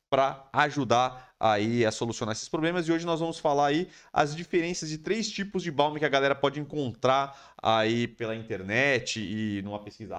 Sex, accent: male, Brazilian